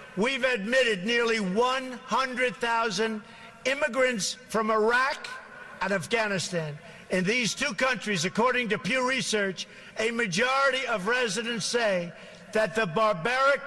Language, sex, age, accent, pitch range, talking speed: English, male, 50-69, American, 190-245 Hz, 110 wpm